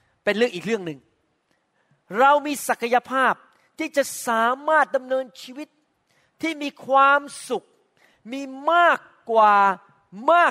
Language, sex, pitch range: Thai, male, 195-270 Hz